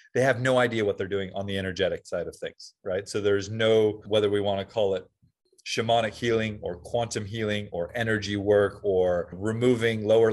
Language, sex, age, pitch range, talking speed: English, male, 30-49, 100-115 Hz, 200 wpm